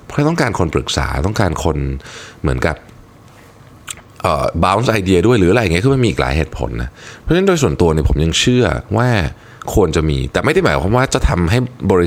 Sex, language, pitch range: male, Thai, 75-110 Hz